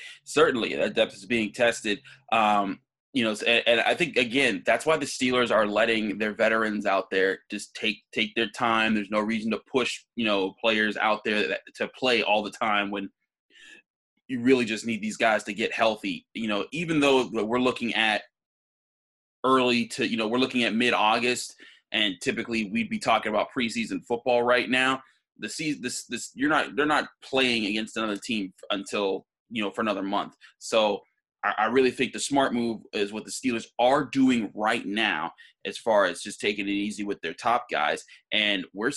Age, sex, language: 20-39, male, English